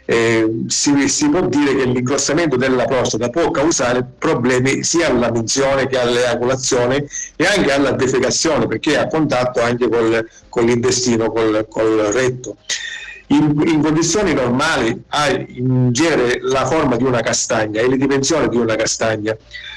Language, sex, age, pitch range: Italian, male, 50-69, 115-140 Hz